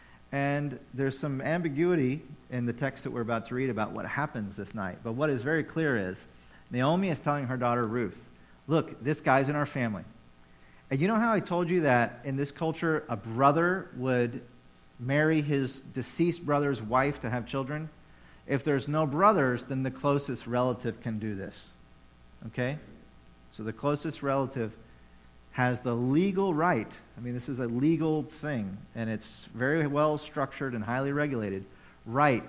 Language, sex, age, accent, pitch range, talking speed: English, male, 40-59, American, 110-145 Hz, 170 wpm